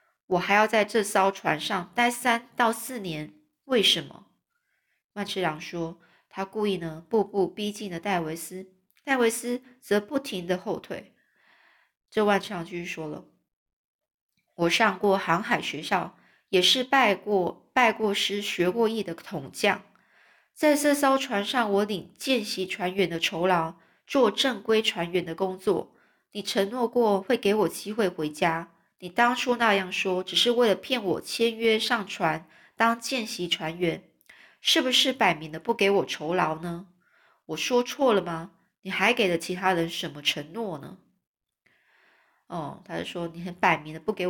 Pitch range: 175-230 Hz